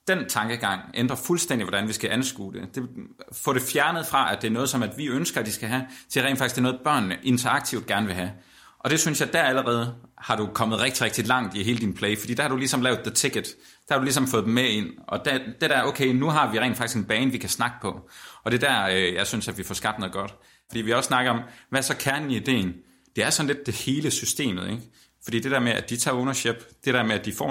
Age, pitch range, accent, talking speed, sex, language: 30-49, 105-130 Hz, native, 275 wpm, male, Danish